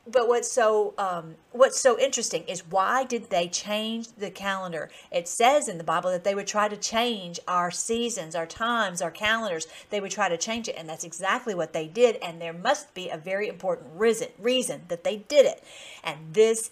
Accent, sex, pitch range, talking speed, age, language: American, female, 180-230 Hz, 210 wpm, 50-69, English